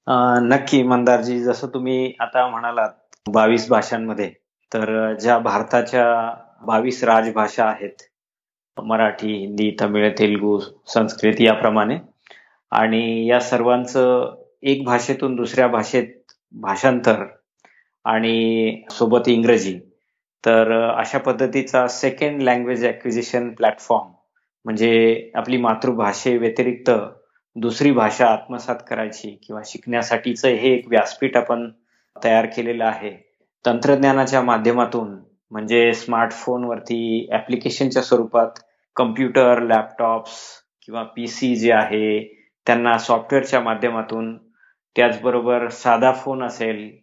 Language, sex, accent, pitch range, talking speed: Marathi, male, native, 110-125 Hz, 95 wpm